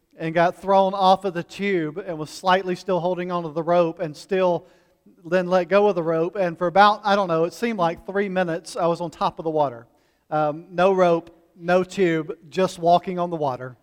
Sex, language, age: male, English, 40-59